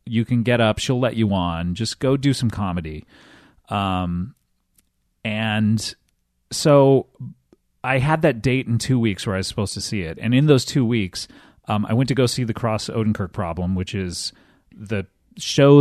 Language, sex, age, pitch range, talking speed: English, male, 30-49, 100-160 Hz, 185 wpm